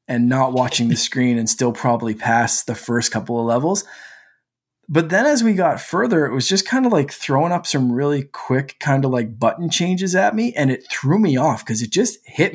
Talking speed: 225 wpm